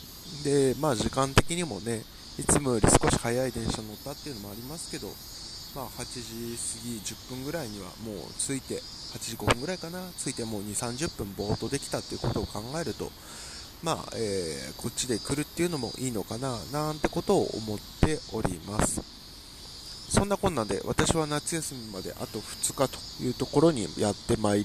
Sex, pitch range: male, 105-150 Hz